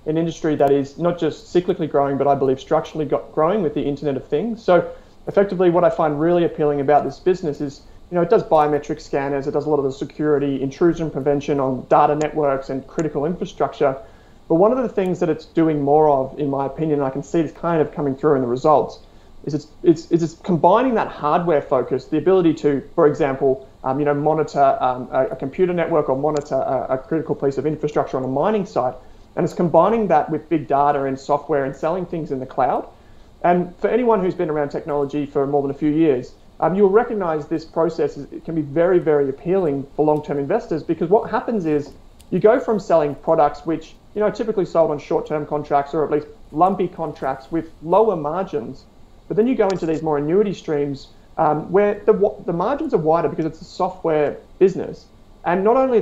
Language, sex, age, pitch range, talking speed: English, male, 30-49, 145-175 Hz, 215 wpm